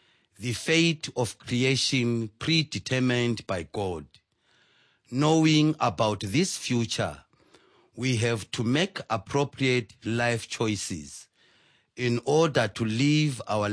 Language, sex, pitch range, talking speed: English, male, 105-145 Hz, 100 wpm